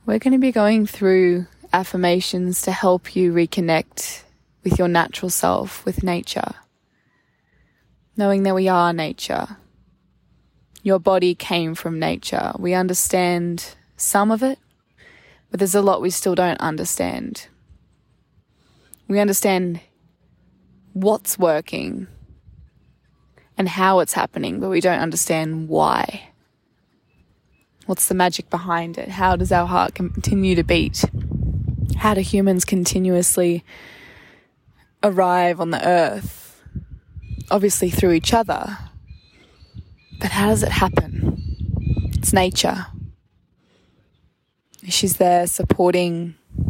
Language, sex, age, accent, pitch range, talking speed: English, female, 20-39, Australian, 130-190 Hz, 110 wpm